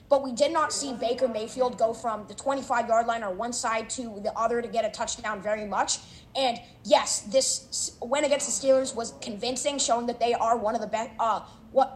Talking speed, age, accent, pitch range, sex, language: 220 wpm, 20-39, American, 220-255 Hz, female, English